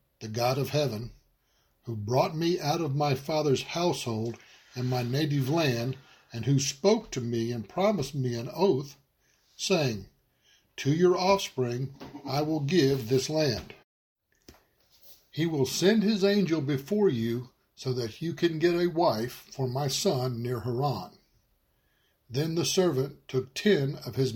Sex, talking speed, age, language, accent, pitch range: male, 150 wpm, 60-79, English, American, 125-155 Hz